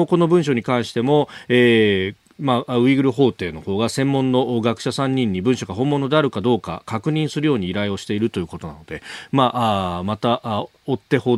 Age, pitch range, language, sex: 40-59, 105-140 Hz, Japanese, male